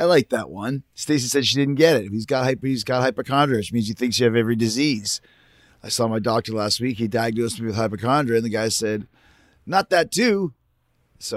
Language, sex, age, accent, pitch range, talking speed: English, male, 30-49, American, 115-140 Hz, 215 wpm